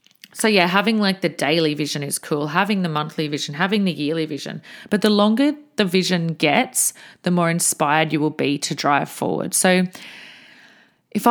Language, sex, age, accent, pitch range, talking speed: English, female, 30-49, Australian, 160-205 Hz, 180 wpm